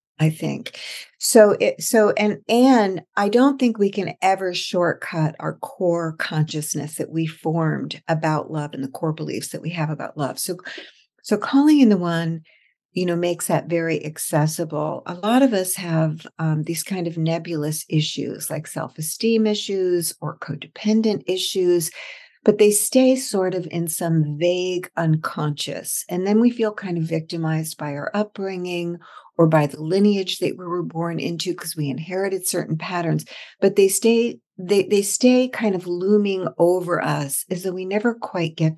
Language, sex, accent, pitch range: English, female, American, 160-205 Hz